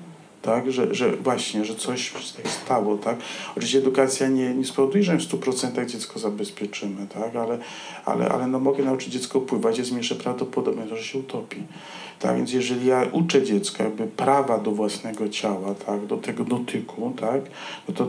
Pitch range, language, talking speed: 105-135 Hz, Polish, 155 wpm